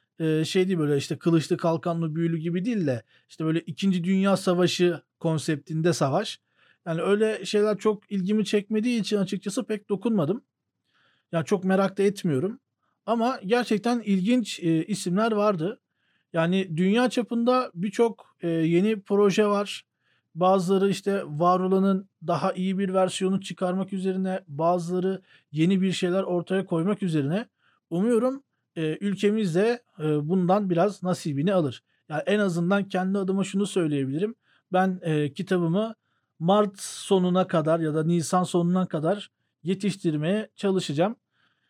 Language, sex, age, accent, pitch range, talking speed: Turkish, male, 40-59, native, 170-205 Hz, 130 wpm